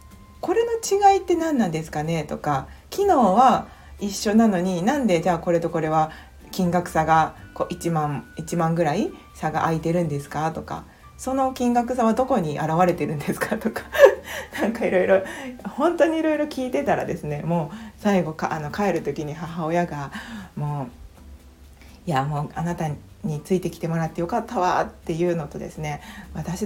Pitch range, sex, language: 160-235 Hz, female, Japanese